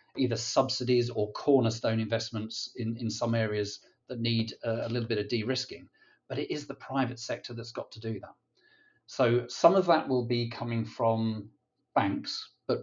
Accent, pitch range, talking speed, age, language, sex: British, 110-125 Hz, 175 wpm, 40-59, English, male